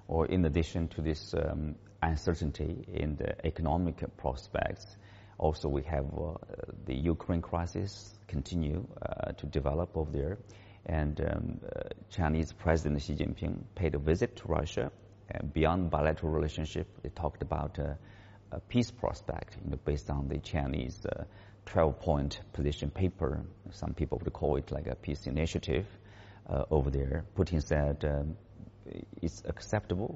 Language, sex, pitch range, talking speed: English, male, 75-95 Hz, 140 wpm